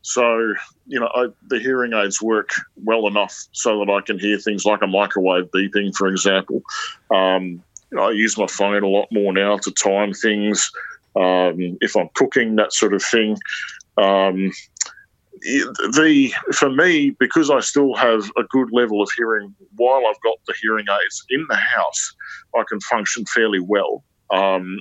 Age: 40-59